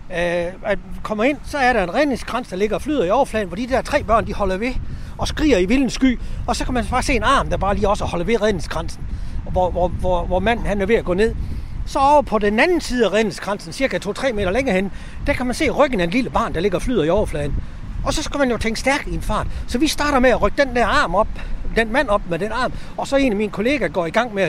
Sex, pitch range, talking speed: male, 180-255 Hz, 285 wpm